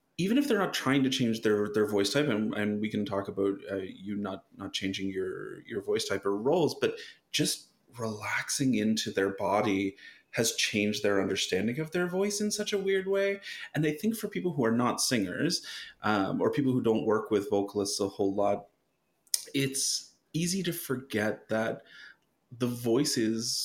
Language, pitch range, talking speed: English, 105-145 Hz, 190 wpm